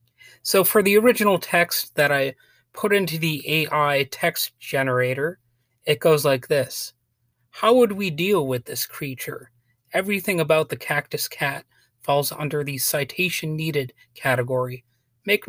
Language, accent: English, American